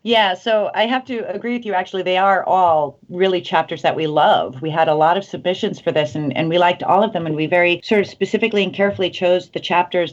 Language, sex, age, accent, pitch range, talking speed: English, female, 40-59, American, 150-190 Hz, 255 wpm